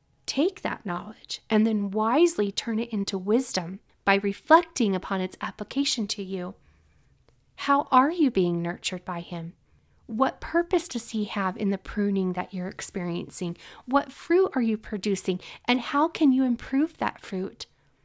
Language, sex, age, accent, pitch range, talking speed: English, female, 30-49, American, 195-275 Hz, 155 wpm